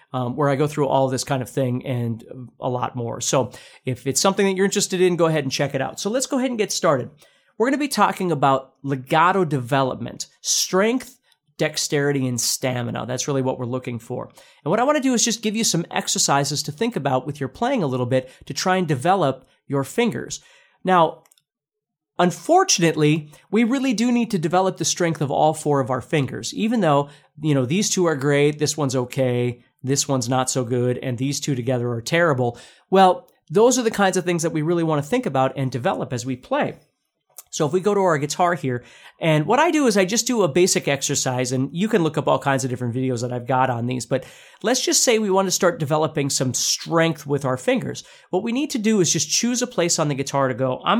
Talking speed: 240 wpm